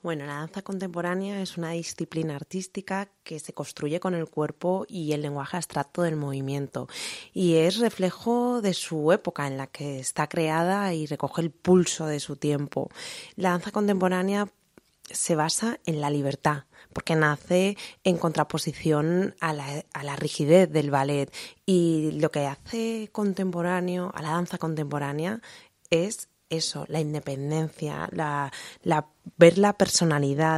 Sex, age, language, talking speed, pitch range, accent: female, 20-39, Spanish, 145 wpm, 150-180 Hz, Spanish